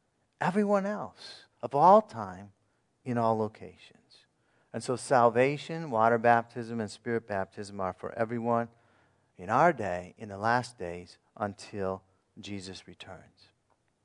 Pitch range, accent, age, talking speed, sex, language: 105-155 Hz, American, 50-69, 125 wpm, male, English